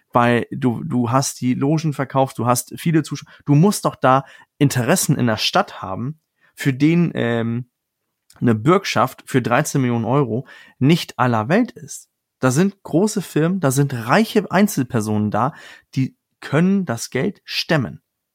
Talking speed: 155 wpm